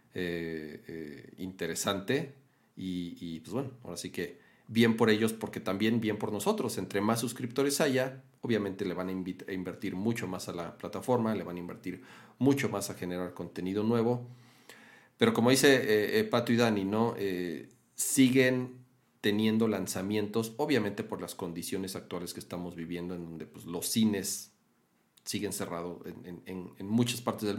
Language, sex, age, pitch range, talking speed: Spanish, male, 40-59, 95-120 Hz, 170 wpm